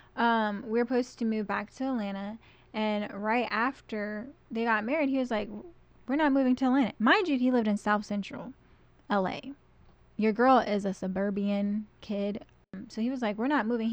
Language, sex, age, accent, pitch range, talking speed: English, female, 10-29, American, 205-245 Hz, 190 wpm